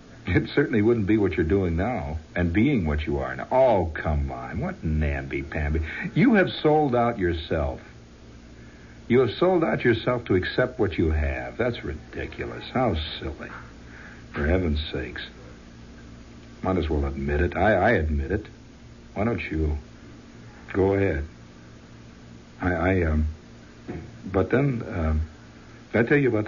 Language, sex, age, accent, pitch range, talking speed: English, male, 60-79, American, 70-95 Hz, 150 wpm